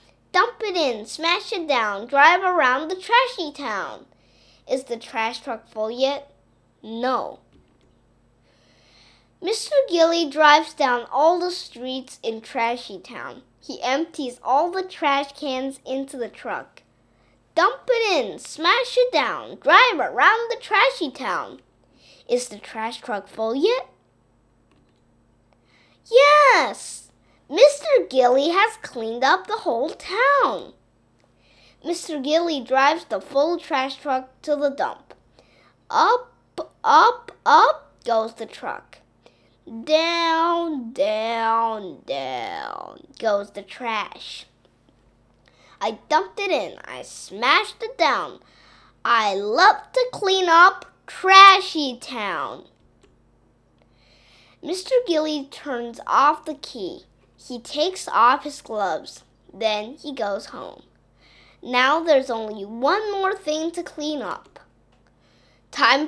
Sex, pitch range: female, 235-350 Hz